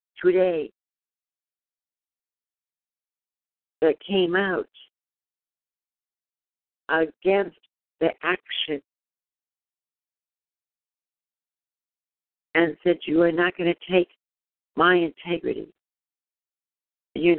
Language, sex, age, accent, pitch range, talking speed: English, female, 60-79, American, 140-175 Hz, 60 wpm